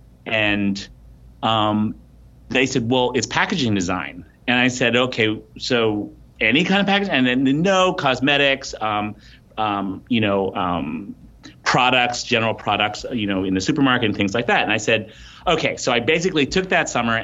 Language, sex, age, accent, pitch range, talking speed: English, male, 30-49, American, 100-125 Hz, 165 wpm